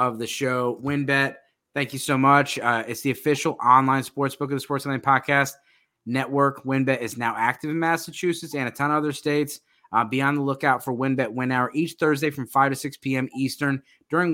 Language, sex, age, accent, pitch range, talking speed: English, male, 20-39, American, 130-150 Hz, 215 wpm